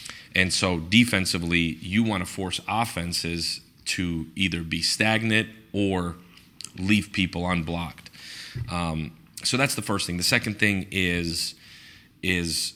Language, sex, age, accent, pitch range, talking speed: English, male, 30-49, American, 85-95 Hz, 125 wpm